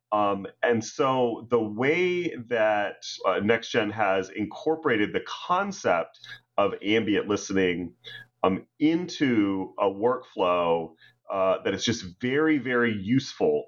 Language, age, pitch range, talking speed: English, 30-49, 95-125 Hz, 115 wpm